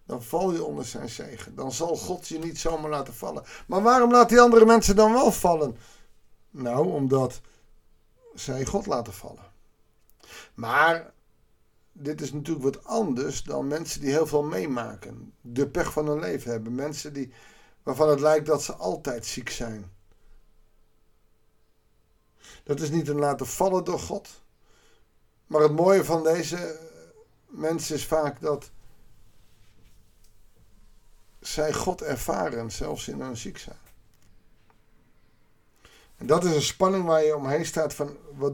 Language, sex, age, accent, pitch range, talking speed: Dutch, male, 50-69, Dutch, 125-170 Hz, 145 wpm